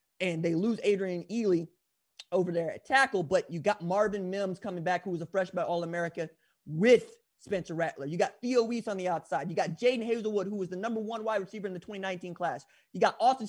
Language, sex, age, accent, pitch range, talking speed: English, male, 20-39, American, 175-240 Hz, 220 wpm